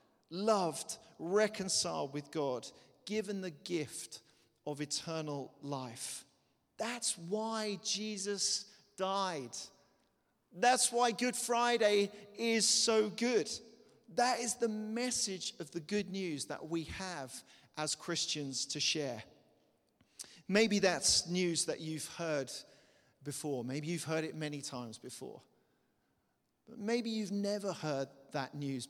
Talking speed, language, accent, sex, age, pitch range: 120 wpm, English, British, male, 40-59, 150-210 Hz